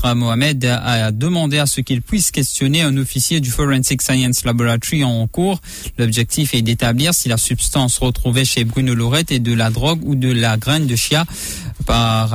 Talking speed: 180 wpm